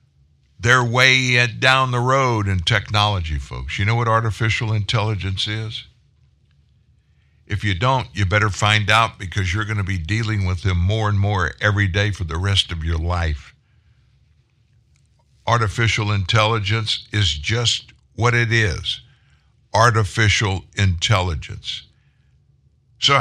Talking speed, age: 130 wpm, 60-79